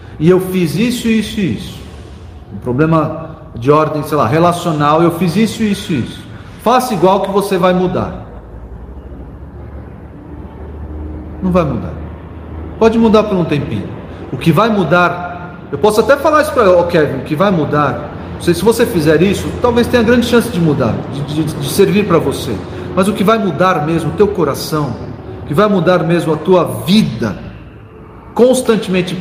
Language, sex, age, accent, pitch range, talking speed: Portuguese, male, 40-59, Brazilian, 125-190 Hz, 170 wpm